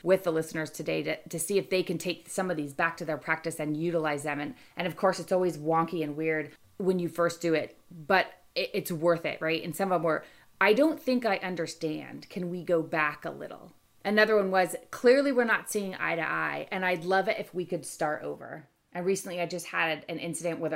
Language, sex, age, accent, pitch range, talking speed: English, female, 30-49, American, 160-195 Hz, 245 wpm